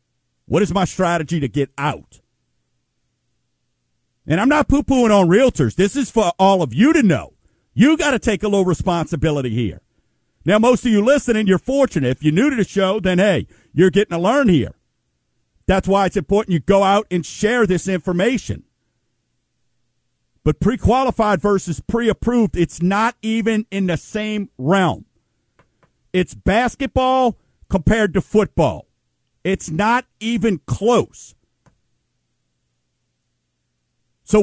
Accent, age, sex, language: American, 50-69, male, English